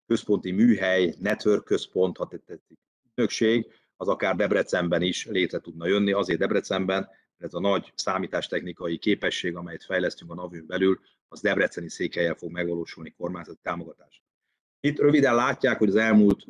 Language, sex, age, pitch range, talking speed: Hungarian, male, 30-49, 90-105 Hz, 155 wpm